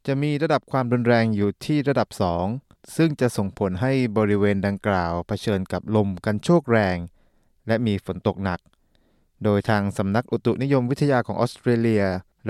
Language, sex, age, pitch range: Thai, male, 20-39, 100-125 Hz